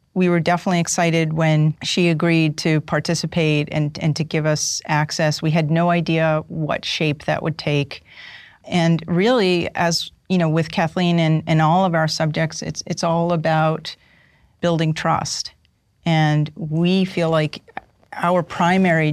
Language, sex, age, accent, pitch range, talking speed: English, female, 40-59, American, 150-165 Hz, 155 wpm